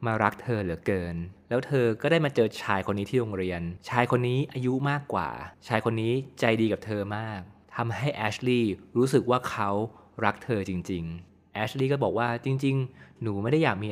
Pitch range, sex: 95-125 Hz, male